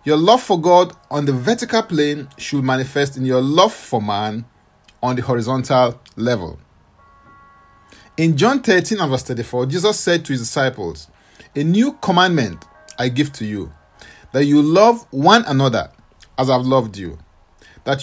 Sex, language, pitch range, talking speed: male, English, 125-185 Hz, 155 wpm